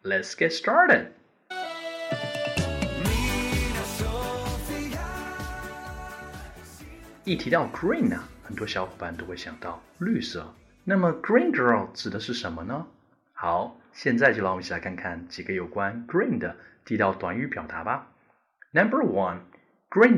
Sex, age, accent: male, 30-49, native